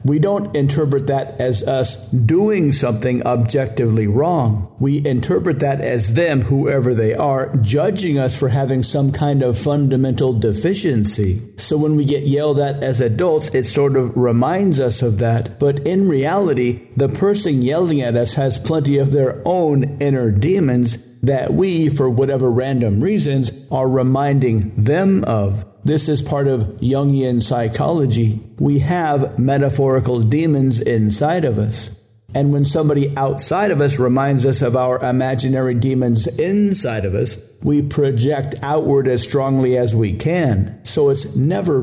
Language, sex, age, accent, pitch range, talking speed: English, male, 50-69, American, 120-145 Hz, 150 wpm